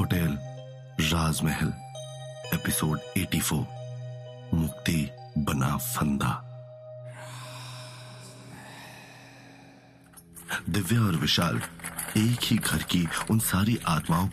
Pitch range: 80-115 Hz